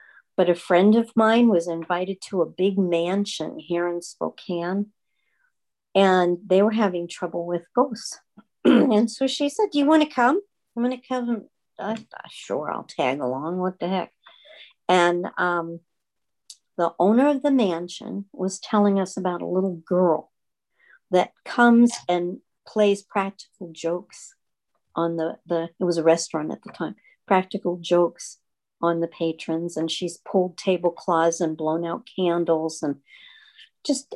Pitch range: 175-240 Hz